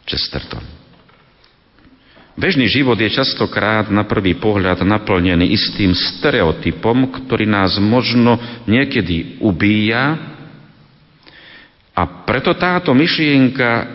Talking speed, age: 85 wpm, 50-69